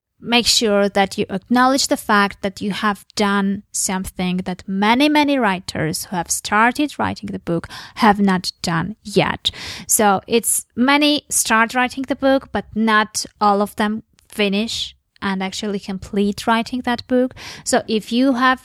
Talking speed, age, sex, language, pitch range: 160 wpm, 20-39, female, English, 195-240 Hz